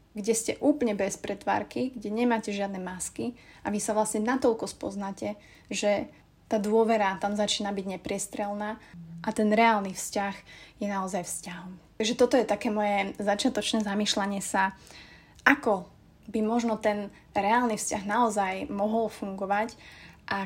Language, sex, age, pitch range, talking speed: Slovak, female, 30-49, 200-225 Hz, 140 wpm